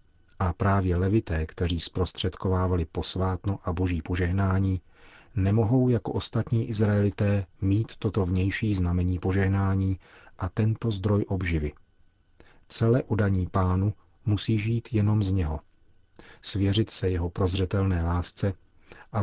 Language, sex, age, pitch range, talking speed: Czech, male, 40-59, 90-105 Hz, 110 wpm